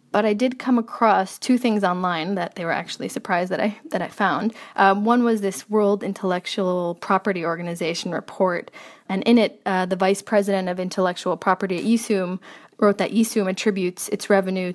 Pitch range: 180-205 Hz